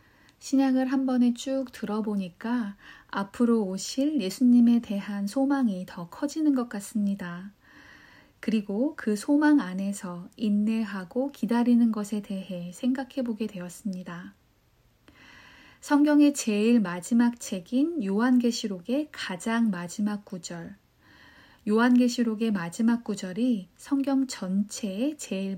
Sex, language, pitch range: female, Korean, 195-245 Hz